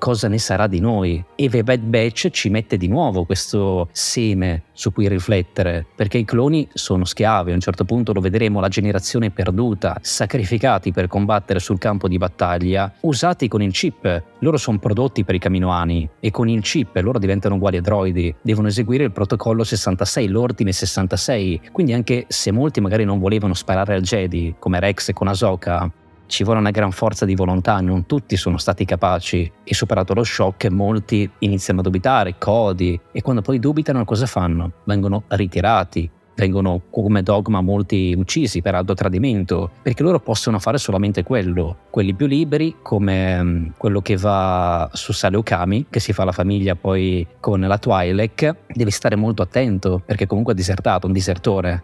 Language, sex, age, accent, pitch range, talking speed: Italian, male, 20-39, native, 95-115 Hz, 175 wpm